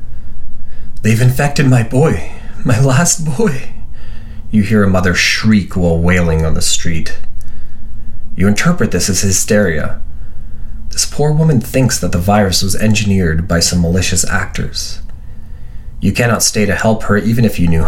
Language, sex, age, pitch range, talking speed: English, male, 30-49, 85-105 Hz, 150 wpm